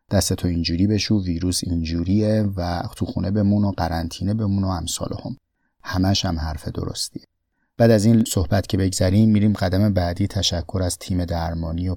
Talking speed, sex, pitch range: 155 wpm, male, 85-110 Hz